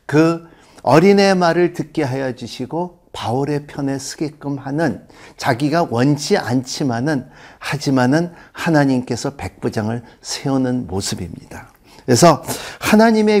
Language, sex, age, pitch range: Korean, male, 50-69, 125-190 Hz